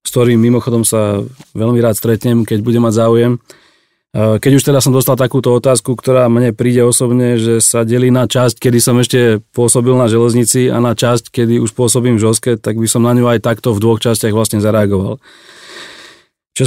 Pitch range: 115-125 Hz